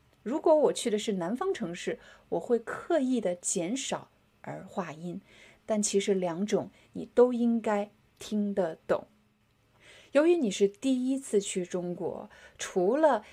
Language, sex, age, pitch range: Chinese, female, 20-39, 185-245 Hz